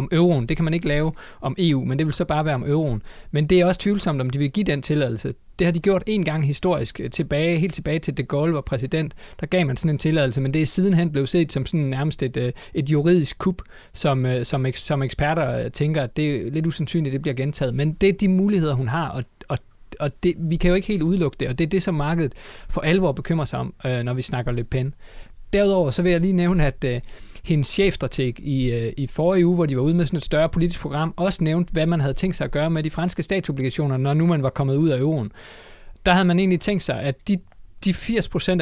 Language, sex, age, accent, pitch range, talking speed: Danish, male, 30-49, native, 135-175 Hz, 255 wpm